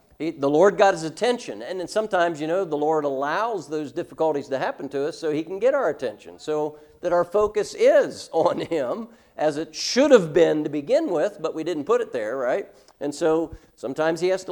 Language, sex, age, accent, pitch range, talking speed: English, male, 50-69, American, 150-200 Hz, 220 wpm